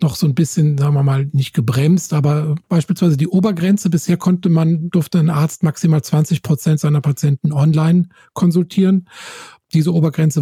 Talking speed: 160 wpm